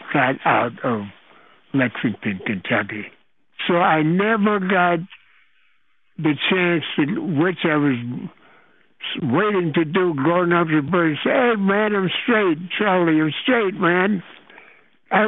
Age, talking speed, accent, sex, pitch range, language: 60-79, 125 wpm, American, male, 150-200 Hz, English